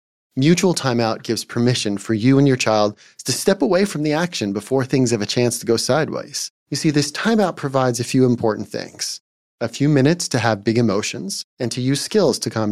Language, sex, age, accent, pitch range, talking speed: English, male, 30-49, American, 110-140 Hz, 210 wpm